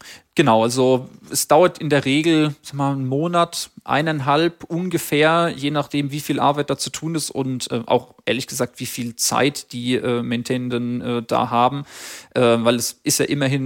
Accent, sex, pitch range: German, male, 120-145 Hz